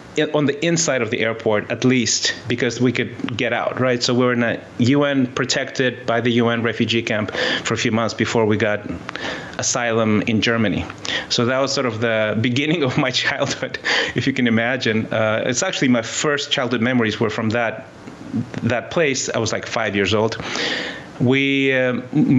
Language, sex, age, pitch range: English, male, 30-49, 115-135 Hz